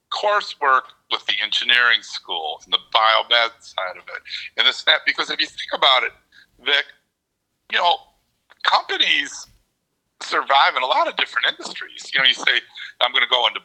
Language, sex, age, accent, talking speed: English, male, 50-69, American, 175 wpm